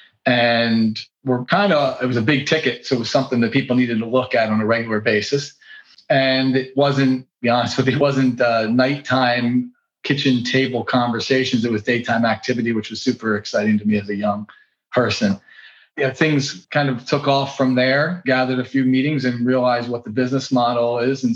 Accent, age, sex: American, 40-59, male